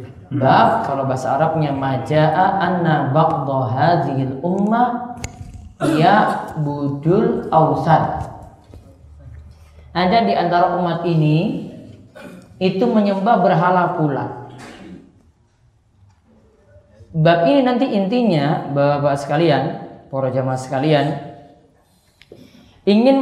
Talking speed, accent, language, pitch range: 75 wpm, native, Indonesian, 140-220 Hz